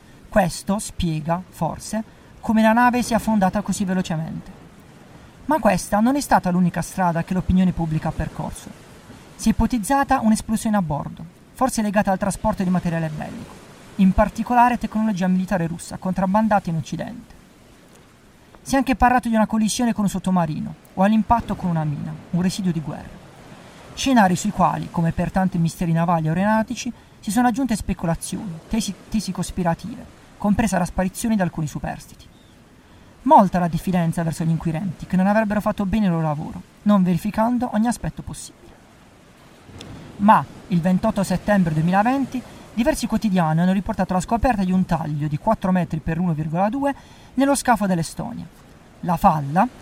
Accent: native